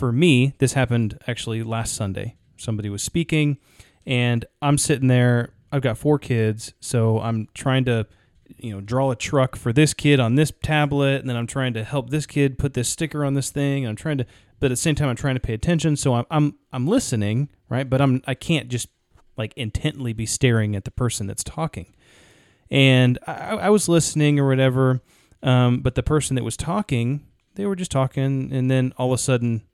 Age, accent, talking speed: 30-49, American, 210 wpm